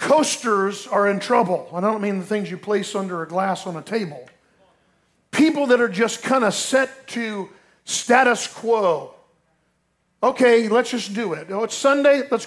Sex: male